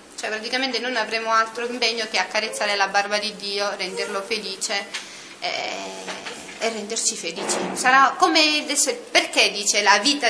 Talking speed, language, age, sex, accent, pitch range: 145 wpm, Italian, 30-49, female, native, 195-270 Hz